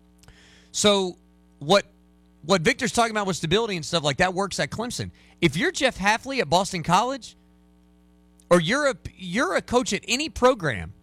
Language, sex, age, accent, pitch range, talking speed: English, male, 40-59, American, 145-210 Hz, 170 wpm